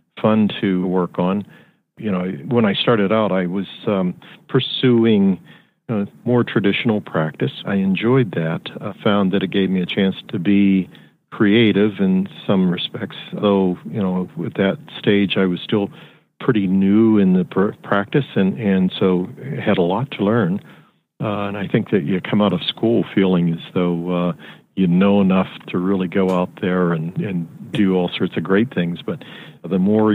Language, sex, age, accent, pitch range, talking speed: English, male, 50-69, American, 90-110 Hz, 175 wpm